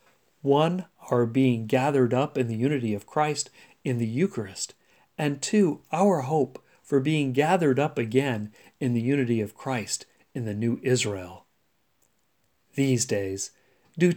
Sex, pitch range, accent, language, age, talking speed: male, 125-165 Hz, American, English, 40-59, 145 wpm